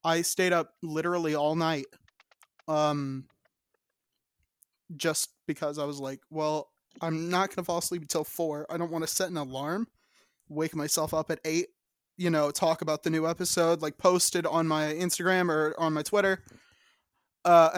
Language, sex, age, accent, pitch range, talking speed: English, male, 20-39, American, 150-180 Hz, 170 wpm